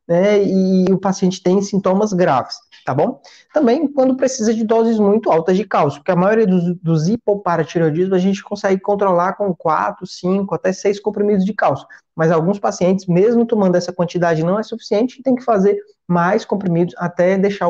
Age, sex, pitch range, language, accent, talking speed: 20-39, male, 165-200 Hz, Portuguese, Brazilian, 185 wpm